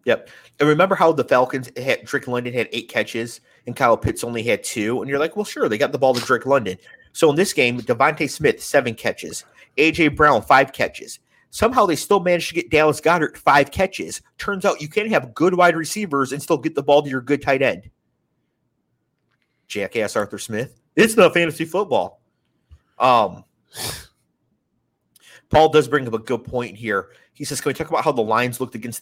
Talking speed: 200 wpm